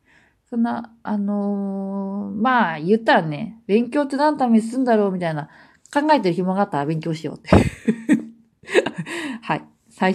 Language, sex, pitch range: Japanese, female, 165-230 Hz